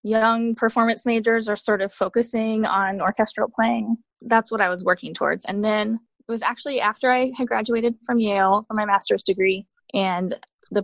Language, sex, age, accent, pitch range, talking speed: English, female, 20-39, American, 185-230 Hz, 185 wpm